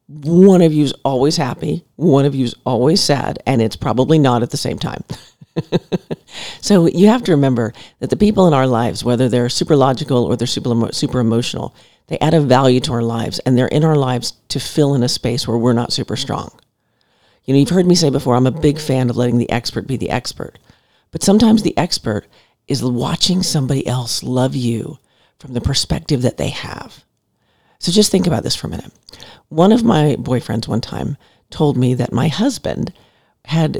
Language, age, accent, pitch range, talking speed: English, 50-69, American, 125-170 Hz, 210 wpm